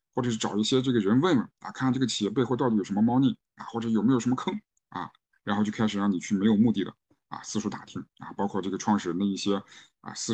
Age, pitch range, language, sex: 50-69, 105-135 Hz, Chinese, male